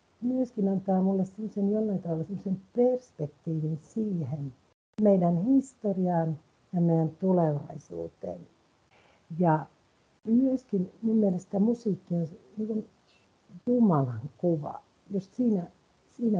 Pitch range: 155-200 Hz